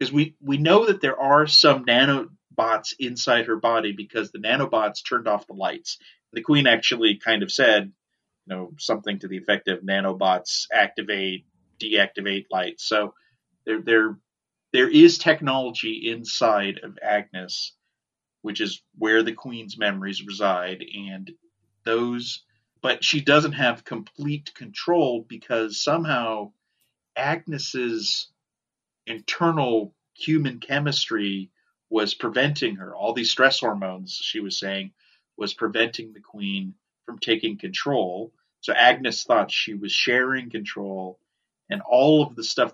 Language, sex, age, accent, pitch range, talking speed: English, male, 30-49, American, 105-145 Hz, 135 wpm